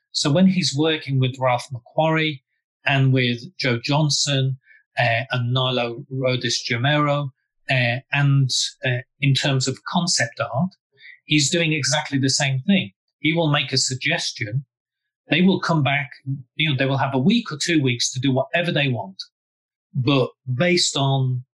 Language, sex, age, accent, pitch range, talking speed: English, male, 30-49, British, 130-160 Hz, 160 wpm